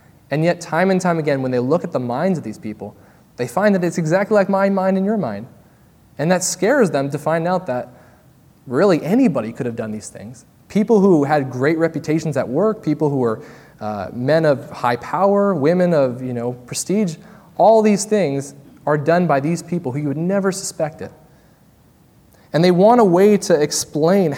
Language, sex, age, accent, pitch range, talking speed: English, male, 20-39, American, 125-175 Hz, 200 wpm